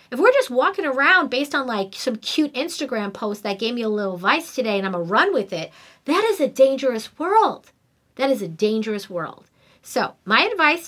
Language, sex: English, female